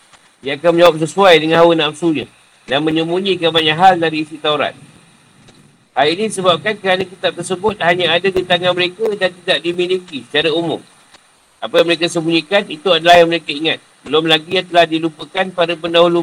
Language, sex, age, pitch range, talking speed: Malay, male, 50-69, 165-190 Hz, 170 wpm